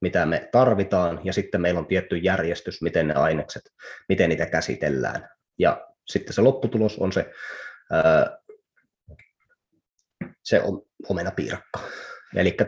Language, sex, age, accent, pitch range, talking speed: Finnish, male, 20-39, native, 90-115 Hz, 115 wpm